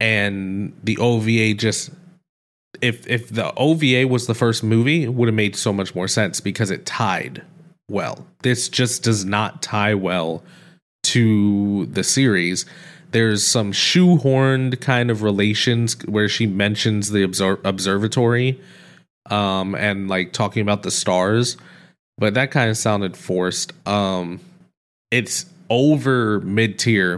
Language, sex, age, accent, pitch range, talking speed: English, male, 20-39, American, 95-120 Hz, 135 wpm